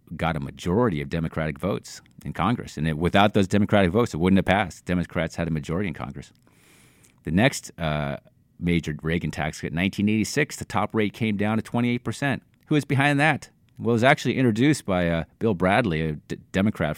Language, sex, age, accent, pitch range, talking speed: English, male, 30-49, American, 80-120 Hz, 185 wpm